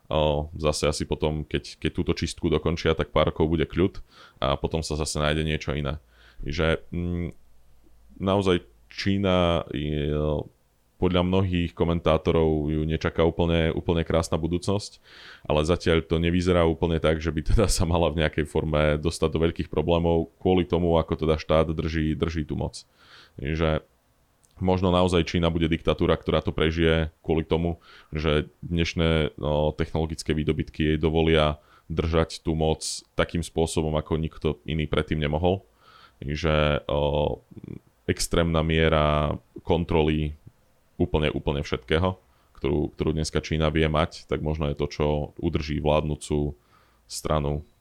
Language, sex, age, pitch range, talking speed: Slovak, male, 20-39, 75-85 Hz, 140 wpm